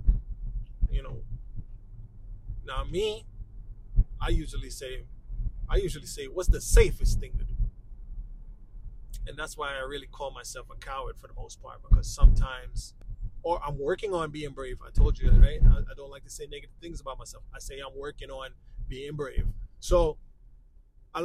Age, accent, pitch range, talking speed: 20-39, American, 115-150 Hz, 165 wpm